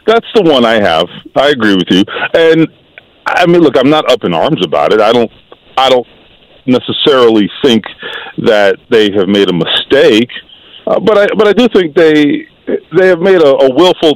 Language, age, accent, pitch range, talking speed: English, 40-59, American, 110-170 Hz, 195 wpm